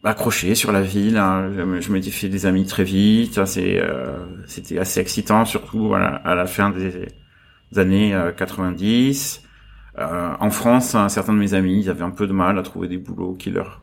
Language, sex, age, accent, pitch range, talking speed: French, male, 30-49, French, 95-105 Hz, 165 wpm